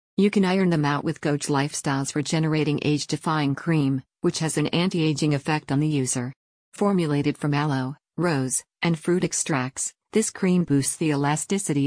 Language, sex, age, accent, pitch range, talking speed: English, female, 50-69, American, 145-165 Hz, 165 wpm